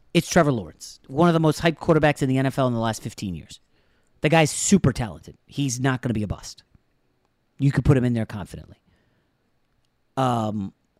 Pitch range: 115-160 Hz